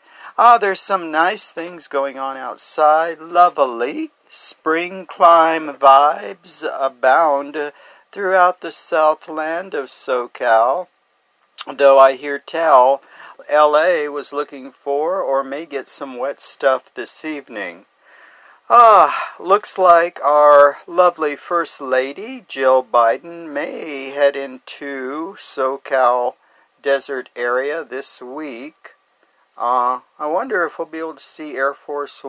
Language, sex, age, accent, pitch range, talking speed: English, male, 50-69, American, 135-170 Hz, 115 wpm